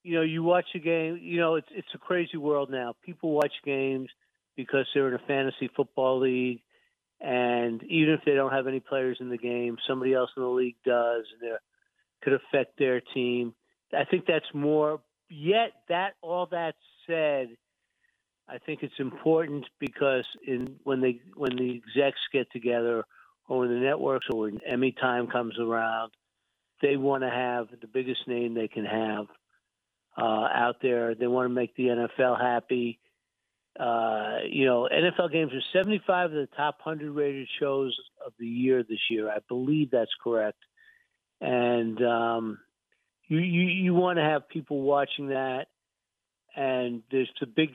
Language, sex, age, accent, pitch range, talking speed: English, male, 50-69, American, 120-150 Hz, 170 wpm